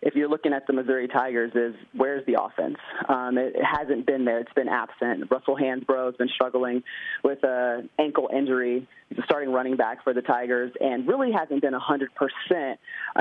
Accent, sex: American, male